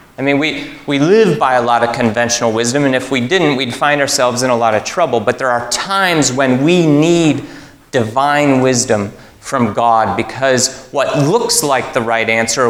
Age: 30-49